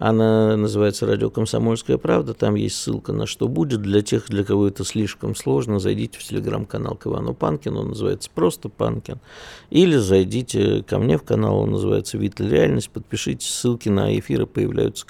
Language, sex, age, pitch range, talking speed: Russian, male, 50-69, 100-115 Hz, 165 wpm